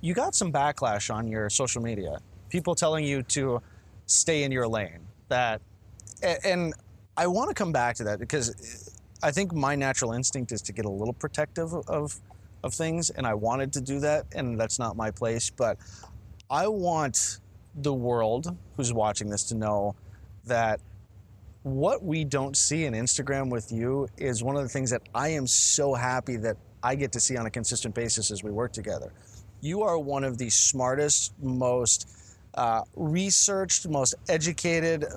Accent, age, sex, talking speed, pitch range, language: American, 20-39, male, 175 wpm, 105-145 Hz, English